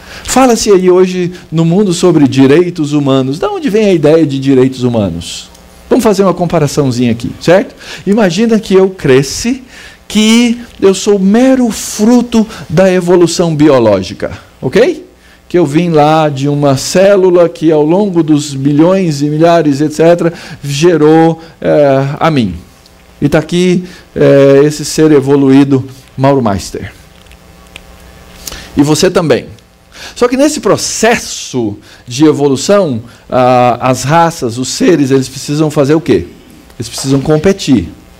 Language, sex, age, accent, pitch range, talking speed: Portuguese, male, 50-69, Brazilian, 125-175 Hz, 135 wpm